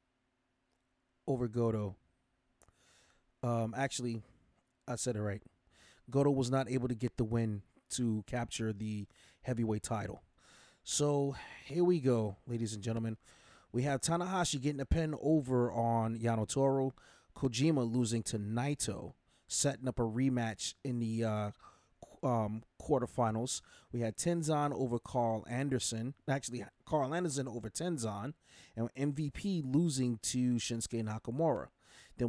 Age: 20-39